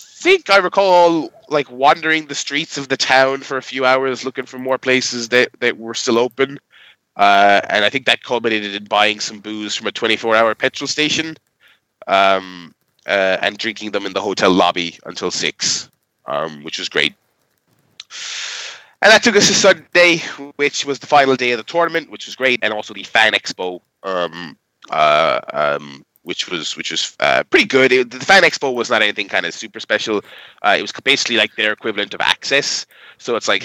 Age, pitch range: 20-39, 105-145 Hz